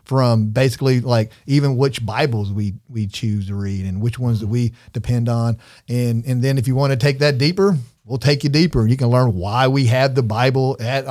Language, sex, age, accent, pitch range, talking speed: English, male, 40-59, American, 115-135 Hz, 220 wpm